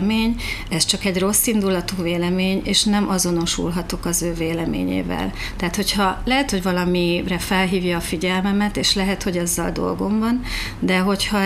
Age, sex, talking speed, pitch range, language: 40-59, female, 145 wpm, 175-200 Hz, Hungarian